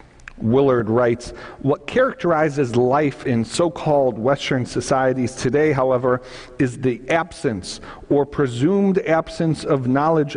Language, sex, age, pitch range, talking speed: English, male, 50-69, 125-165 Hz, 110 wpm